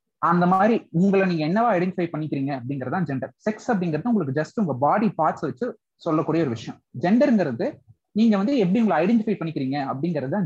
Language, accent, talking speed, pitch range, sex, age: Tamil, native, 160 wpm, 145-195 Hz, male, 20-39